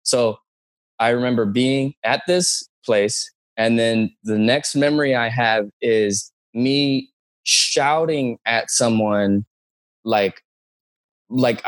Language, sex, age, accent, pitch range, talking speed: English, male, 20-39, American, 105-140 Hz, 110 wpm